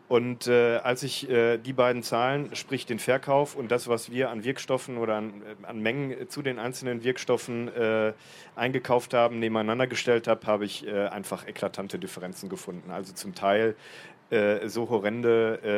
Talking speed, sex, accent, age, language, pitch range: 170 wpm, male, German, 40-59, German, 105-120 Hz